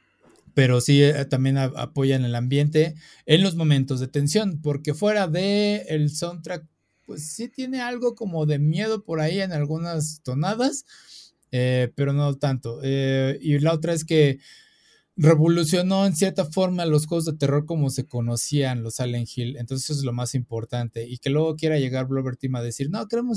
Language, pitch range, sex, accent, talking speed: Spanish, 130-160 Hz, male, Mexican, 175 wpm